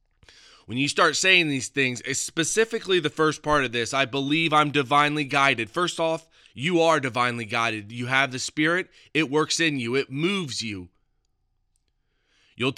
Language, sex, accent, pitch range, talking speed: English, male, American, 130-175 Hz, 170 wpm